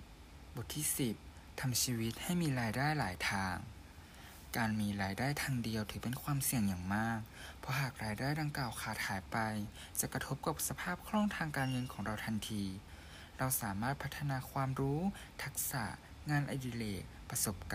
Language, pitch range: Thai, 95-135 Hz